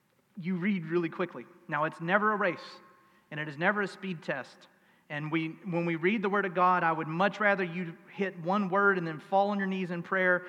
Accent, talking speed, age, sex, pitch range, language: American, 235 wpm, 40-59, male, 160-190 Hz, English